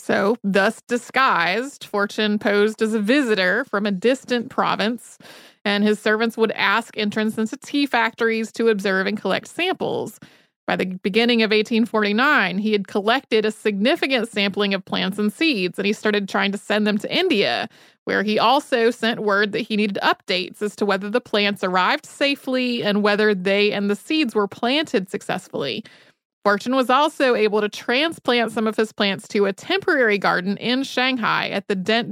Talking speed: 175 wpm